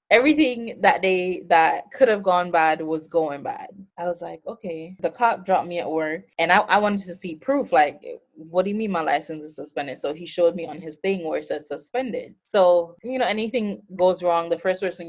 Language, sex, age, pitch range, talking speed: English, female, 20-39, 160-195 Hz, 225 wpm